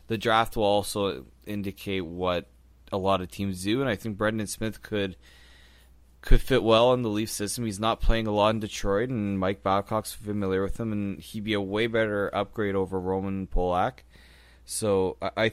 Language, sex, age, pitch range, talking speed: English, male, 20-39, 90-105 Hz, 190 wpm